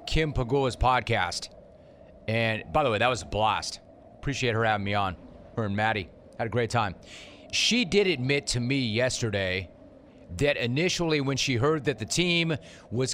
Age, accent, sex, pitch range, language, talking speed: 30-49, American, male, 115-145 Hz, English, 175 wpm